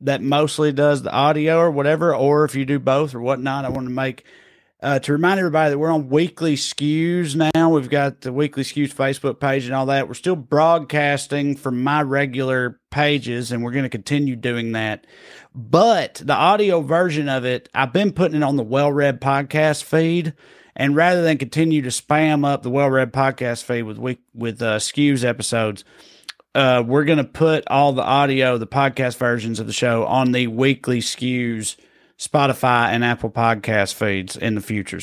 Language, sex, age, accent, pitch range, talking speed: English, male, 30-49, American, 115-145 Hz, 190 wpm